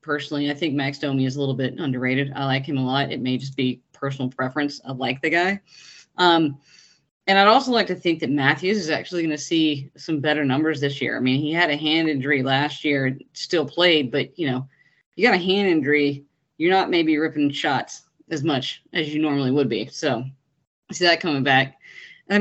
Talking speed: 215 wpm